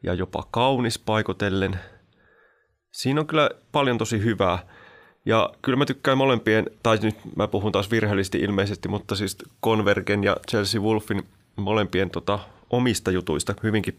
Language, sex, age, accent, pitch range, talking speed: Finnish, male, 30-49, native, 100-120 Hz, 140 wpm